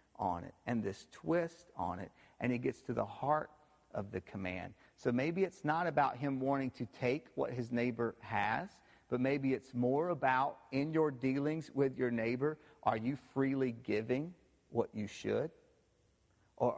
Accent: American